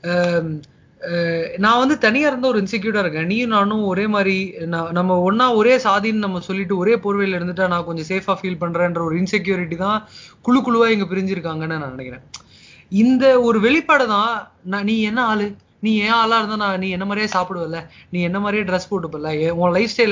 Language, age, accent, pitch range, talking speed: Tamil, 20-39, native, 170-220 Hz, 180 wpm